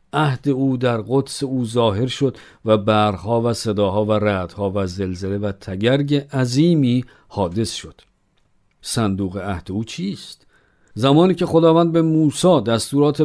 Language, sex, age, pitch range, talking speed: Persian, male, 50-69, 105-145 Hz, 135 wpm